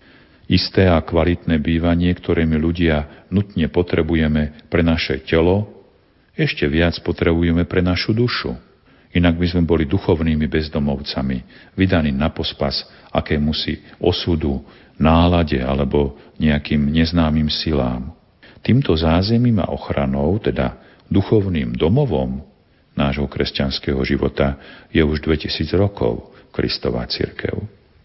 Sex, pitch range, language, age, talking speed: male, 75-95 Hz, Slovak, 50-69, 105 wpm